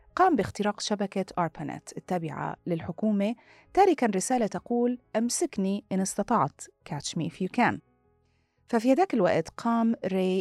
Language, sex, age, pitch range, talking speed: Arabic, female, 30-49, 160-225 Hz, 115 wpm